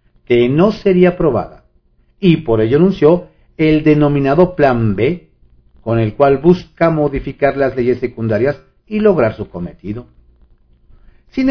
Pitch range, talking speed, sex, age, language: 105-155 Hz, 130 wpm, male, 50-69, Spanish